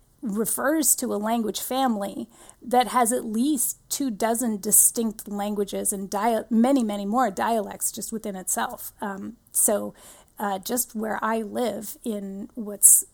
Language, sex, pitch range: English, female, 210-250 Hz